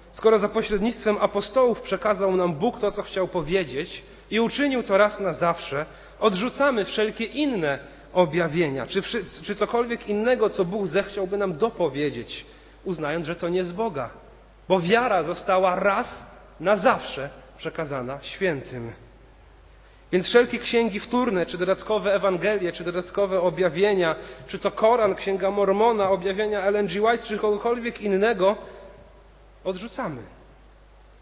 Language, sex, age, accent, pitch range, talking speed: Polish, male, 40-59, native, 185-235 Hz, 125 wpm